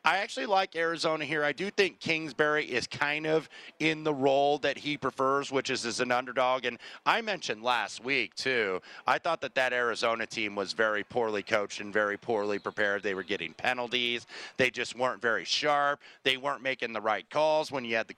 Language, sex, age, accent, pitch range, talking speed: English, male, 30-49, American, 115-150 Hz, 205 wpm